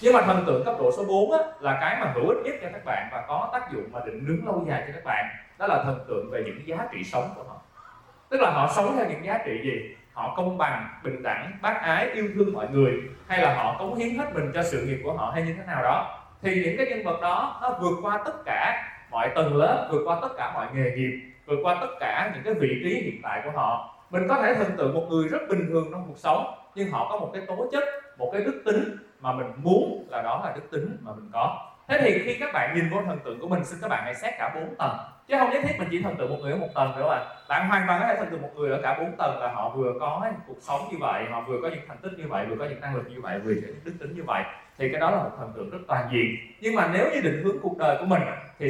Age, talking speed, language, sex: 20-39, 300 wpm, Vietnamese, male